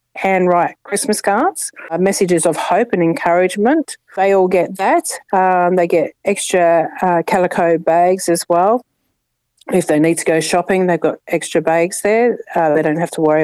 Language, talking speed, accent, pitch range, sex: English, 175 wpm, Australian, 175-215 Hz, female